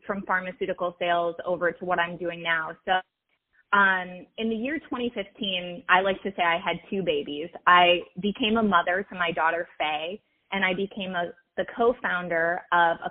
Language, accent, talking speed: English, American, 175 wpm